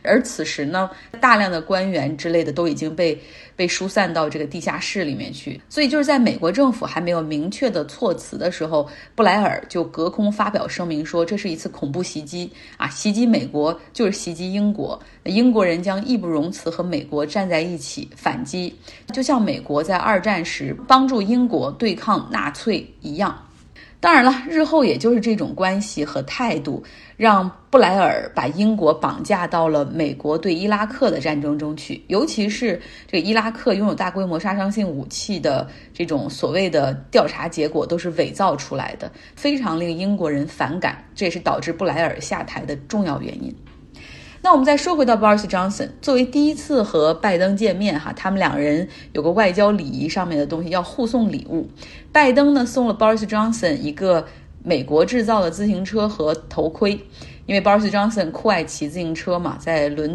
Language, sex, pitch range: Chinese, female, 160-220 Hz